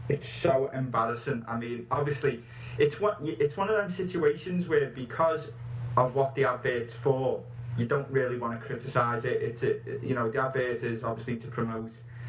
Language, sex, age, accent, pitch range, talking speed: English, male, 20-39, British, 115-130 Hz, 160 wpm